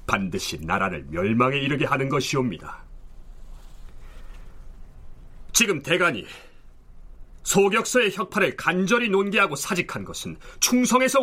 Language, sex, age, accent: Korean, male, 40-59, native